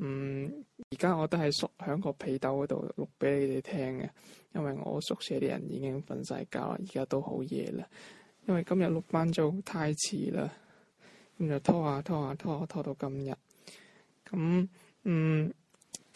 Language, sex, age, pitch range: Chinese, male, 20-39, 140-180 Hz